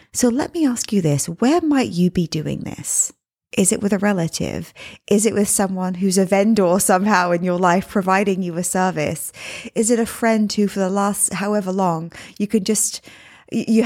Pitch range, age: 175-225 Hz, 20-39